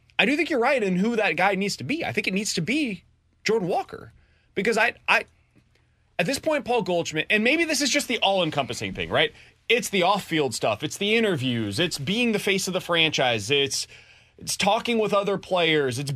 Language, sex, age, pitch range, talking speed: English, male, 30-49, 140-215 Hz, 225 wpm